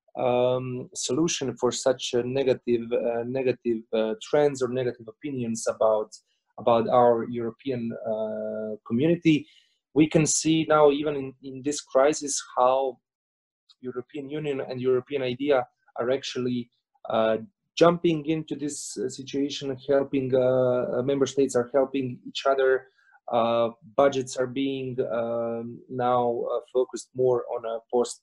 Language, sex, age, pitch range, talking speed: English, male, 30-49, 120-145 Hz, 130 wpm